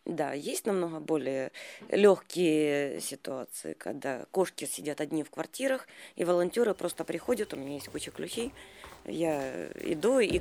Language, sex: Ukrainian, female